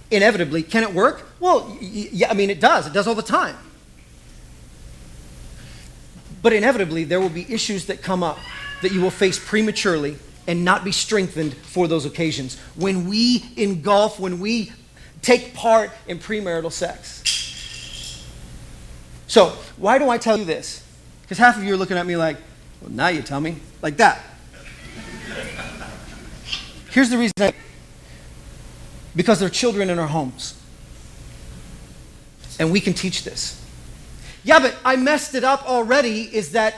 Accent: American